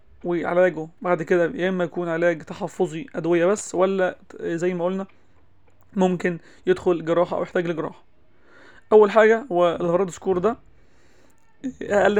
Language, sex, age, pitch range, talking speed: Arabic, male, 30-49, 170-195 Hz, 135 wpm